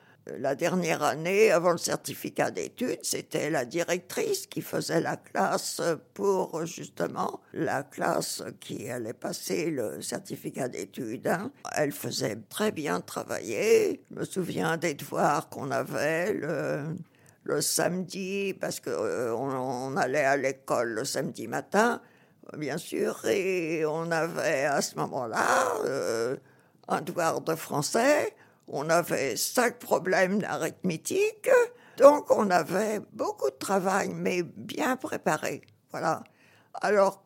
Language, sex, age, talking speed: French, female, 60-79, 125 wpm